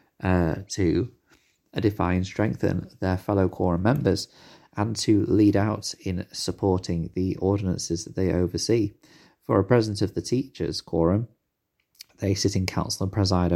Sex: male